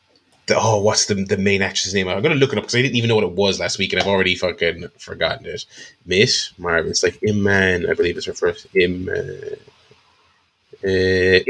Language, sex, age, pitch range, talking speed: English, male, 20-39, 100-150 Hz, 215 wpm